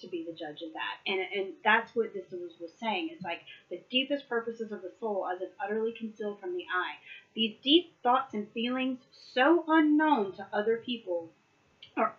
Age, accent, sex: 30-49, American, female